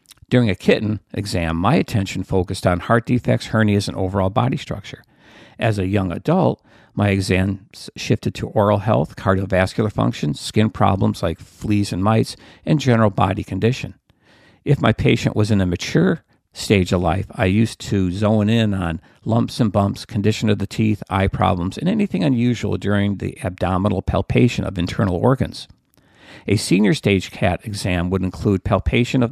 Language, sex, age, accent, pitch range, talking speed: English, male, 50-69, American, 95-120 Hz, 165 wpm